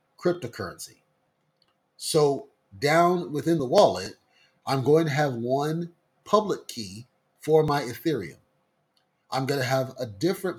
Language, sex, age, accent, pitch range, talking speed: English, male, 30-49, American, 125-155 Hz, 125 wpm